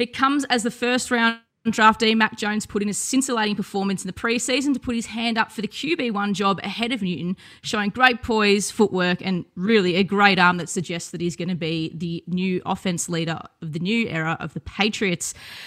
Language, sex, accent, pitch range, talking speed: English, female, Australian, 185-230 Hz, 215 wpm